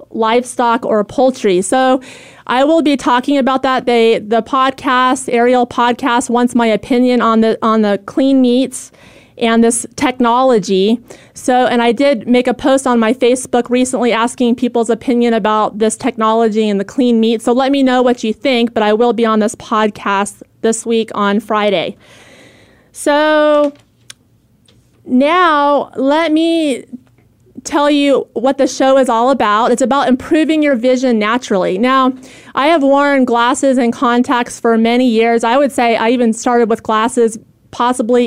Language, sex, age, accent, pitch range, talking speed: English, female, 30-49, American, 230-265 Hz, 160 wpm